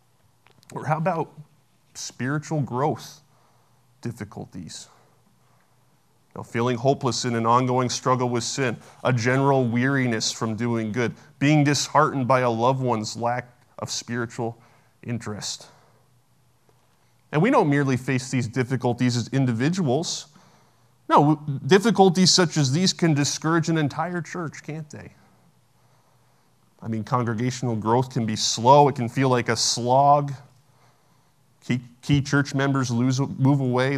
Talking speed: 125 wpm